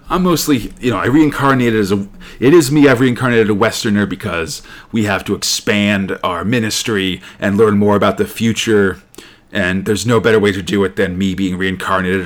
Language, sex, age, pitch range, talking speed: English, male, 40-59, 105-130 Hz, 195 wpm